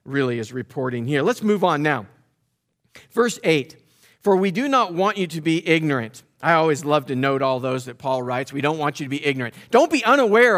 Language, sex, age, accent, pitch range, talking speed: English, male, 50-69, American, 140-195 Hz, 220 wpm